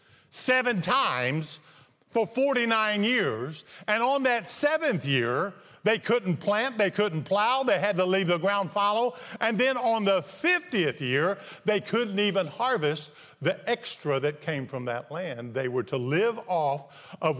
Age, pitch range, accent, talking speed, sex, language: 50-69, 185-250 Hz, American, 160 wpm, male, English